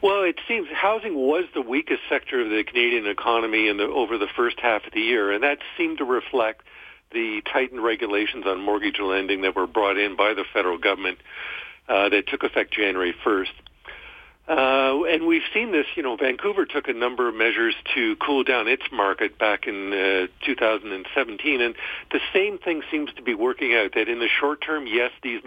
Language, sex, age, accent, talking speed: English, male, 50-69, American, 200 wpm